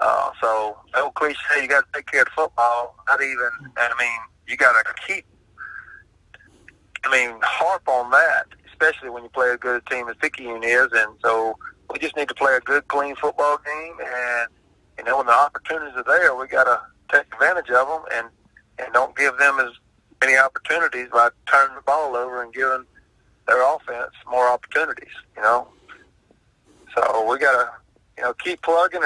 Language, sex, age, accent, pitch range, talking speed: English, male, 40-59, American, 120-140 Hz, 195 wpm